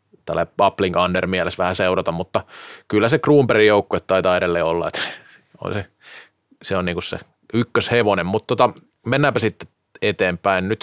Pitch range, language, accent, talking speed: 95-115 Hz, Finnish, native, 145 wpm